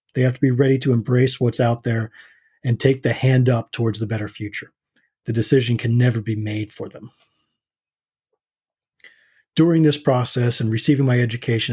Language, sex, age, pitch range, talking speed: English, male, 30-49, 115-130 Hz, 175 wpm